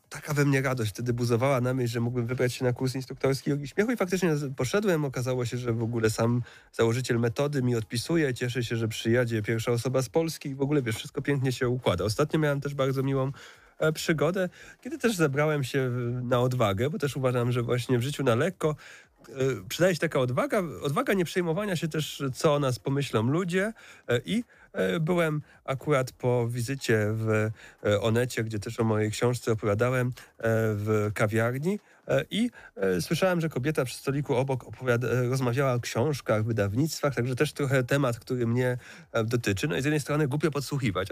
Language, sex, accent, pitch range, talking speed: Polish, male, native, 120-155 Hz, 180 wpm